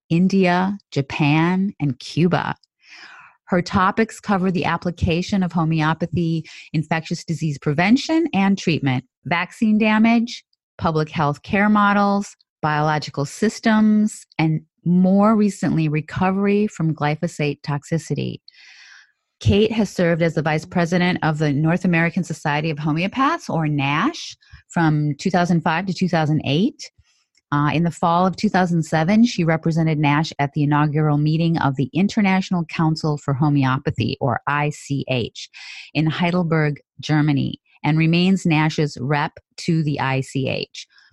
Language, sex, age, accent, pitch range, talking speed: English, female, 30-49, American, 150-190 Hz, 120 wpm